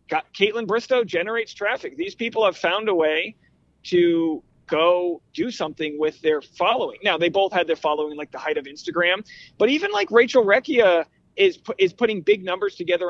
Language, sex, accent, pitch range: English, male, American, 160-235 Hz